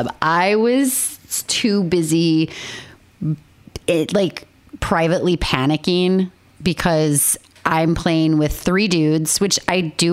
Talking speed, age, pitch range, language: 100 wpm, 30-49, 150-180 Hz, English